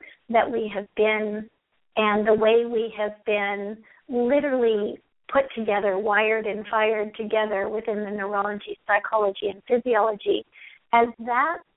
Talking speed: 125 wpm